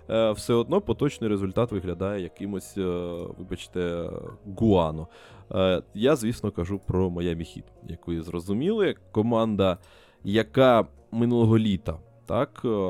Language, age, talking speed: Ukrainian, 20-39, 100 wpm